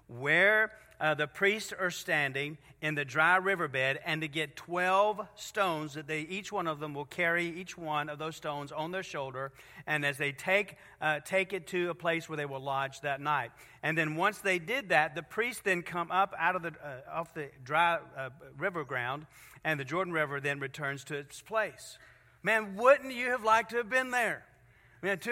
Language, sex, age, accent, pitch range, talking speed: English, male, 40-59, American, 140-190 Hz, 205 wpm